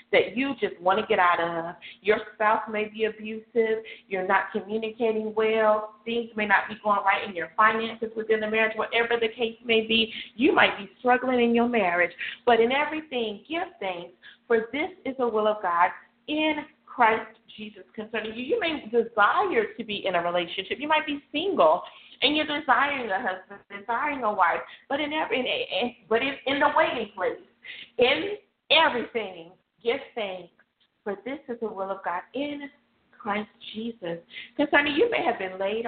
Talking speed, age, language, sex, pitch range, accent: 180 wpm, 40-59, English, female, 195-245 Hz, American